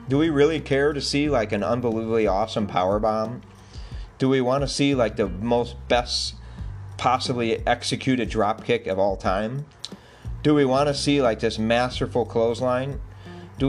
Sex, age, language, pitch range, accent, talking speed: male, 40-59, English, 110-145 Hz, American, 160 wpm